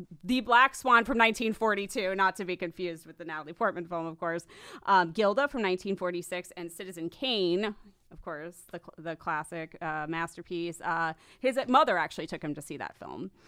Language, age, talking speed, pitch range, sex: English, 30-49, 180 wpm, 165-205 Hz, female